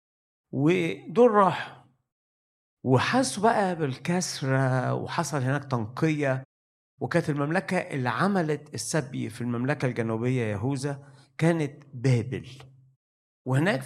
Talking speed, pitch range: 80 wpm, 115-155 Hz